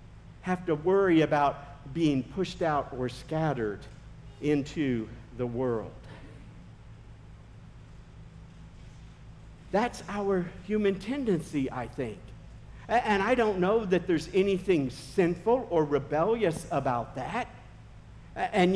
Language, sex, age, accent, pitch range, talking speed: English, male, 50-69, American, 145-210 Hz, 100 wpm